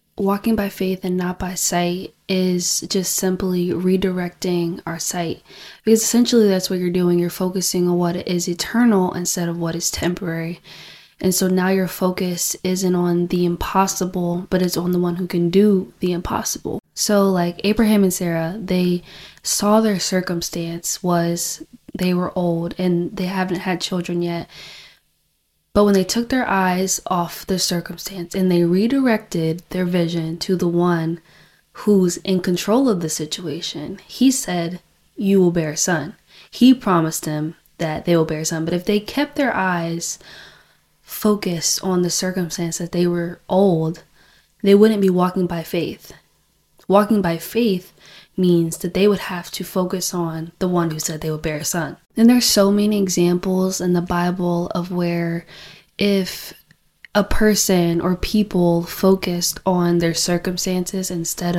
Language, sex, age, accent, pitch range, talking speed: English, female, 20-39, American, 170-190 Hz, 165 wpm